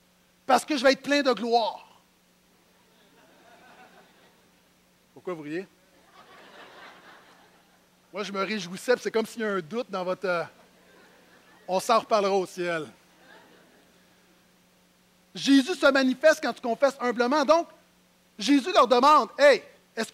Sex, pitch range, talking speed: male, 175-260 Hz, 130 wpm